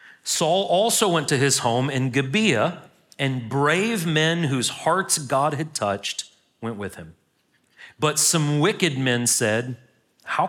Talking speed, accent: 145 wpm, American